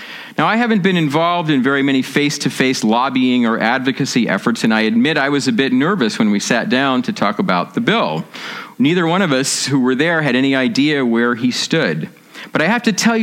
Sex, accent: male, American